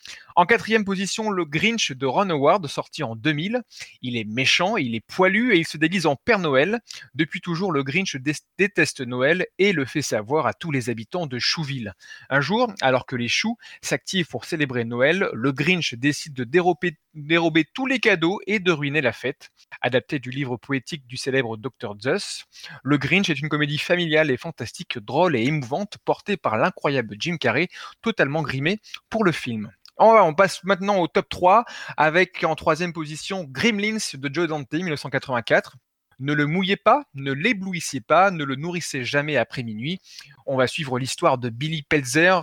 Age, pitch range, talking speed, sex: 20-39, 135-185 Hz, 180 wpm, male